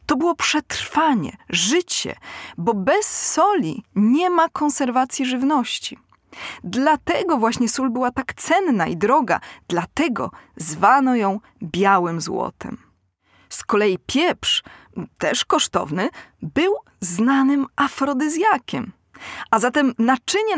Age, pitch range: 20-39, 205-280 Hz